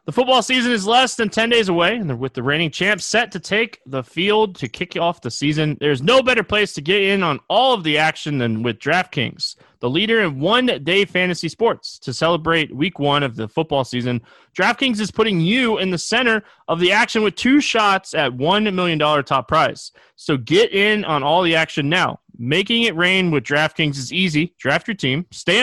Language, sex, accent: English, male, American